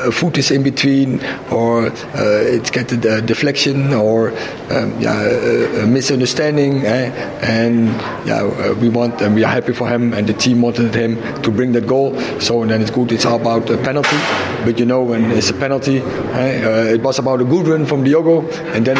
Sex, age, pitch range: male, 50-69, 120-145 Hz